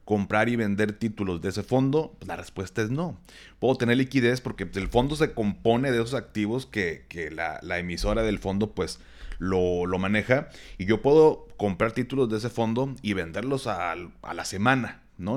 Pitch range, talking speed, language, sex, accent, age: 100-130 Hz, 190 wpm, Spanish, male, Mexican, 30-49